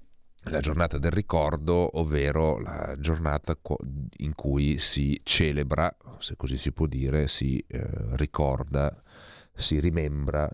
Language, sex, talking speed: Italian, male, 120 wpm